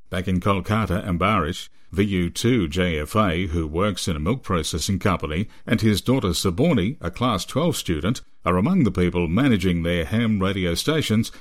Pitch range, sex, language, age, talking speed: 90-120 Hz, male, English, 50-69, 160 wpm